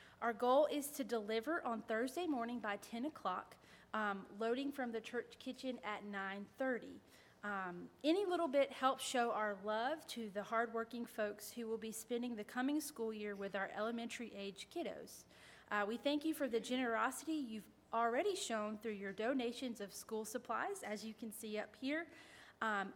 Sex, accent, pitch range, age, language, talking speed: female, American, 210-275 Hz, 30-49, English, 170 wpm